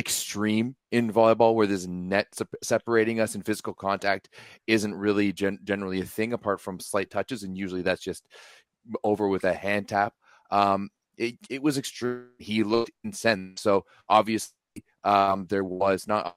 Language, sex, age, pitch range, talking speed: English, male, 30-49, 95-110 Hz, 165 wpm